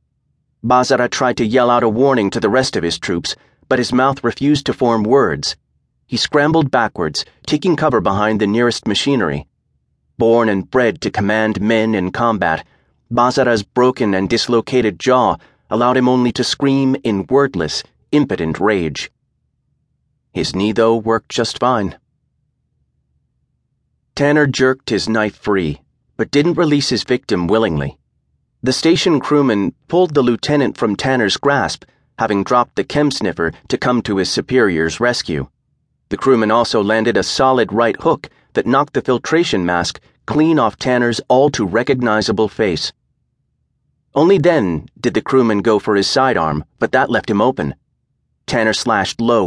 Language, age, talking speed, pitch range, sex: English, 30-49, 150 wpm, 105-135 Hz, male